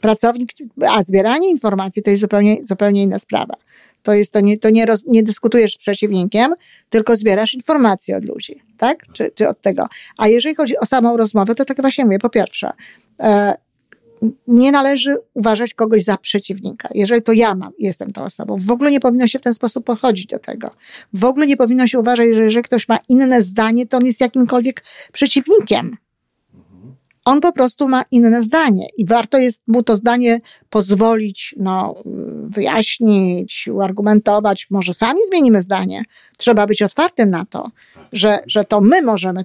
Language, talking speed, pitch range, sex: Polish, 175 wpm, 205-250 Hz, female